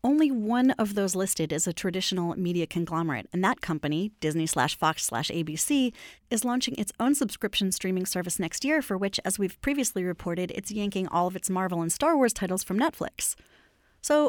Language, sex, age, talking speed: English, female, 30-49, 195 wpm